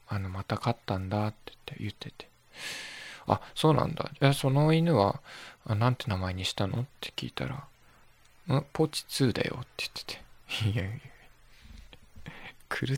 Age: 20-39